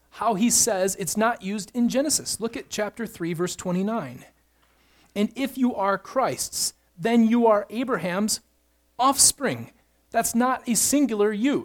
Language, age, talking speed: English, 30-49, 150 wpm